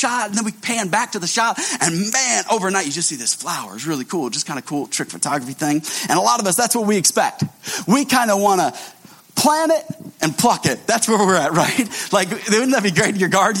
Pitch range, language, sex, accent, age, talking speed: 185-235 Hz, English, male, American, 30-49, 260 wpm